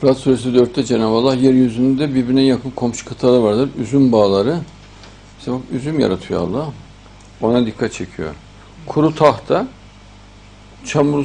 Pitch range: 105-140 Hz